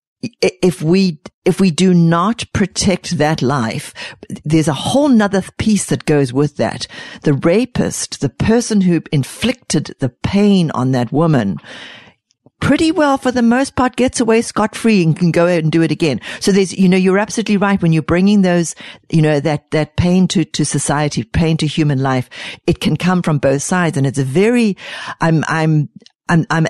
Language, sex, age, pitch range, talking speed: English, female, 60-79, 145-195 Hz, 190 wpm